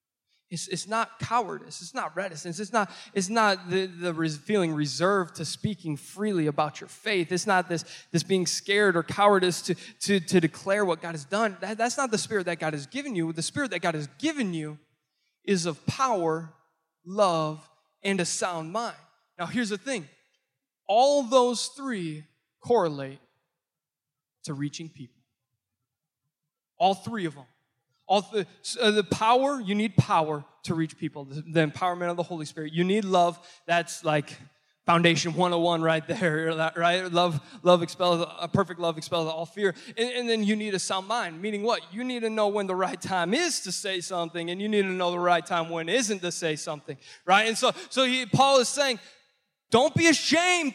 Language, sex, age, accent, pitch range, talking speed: English, male, 20-39, American, 160-210 Hz, 185 wpm